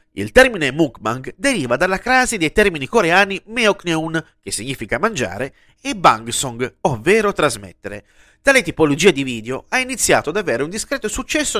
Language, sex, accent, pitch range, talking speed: Italian, male, native, 130-210 Hz, 145 wpm